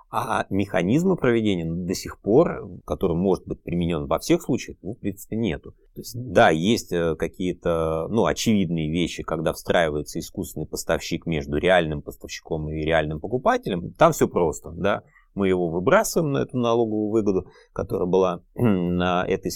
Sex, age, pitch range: male, 30-49, 80-110 Hz